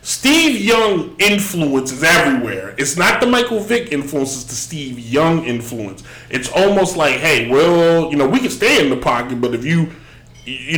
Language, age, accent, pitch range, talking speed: English, 30-49, American, 125-170 Hz, 185 wpm